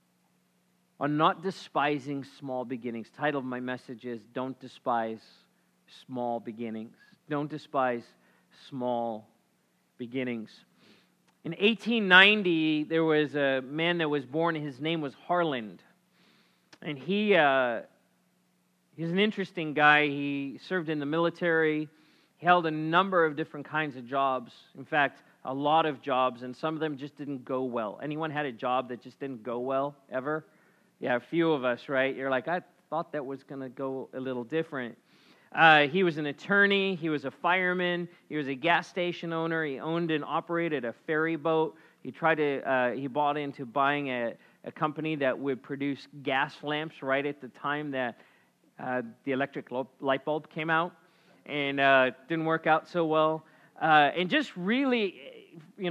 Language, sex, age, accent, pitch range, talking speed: English, male, 40-59, American, 130-170 Hz, 165 wpm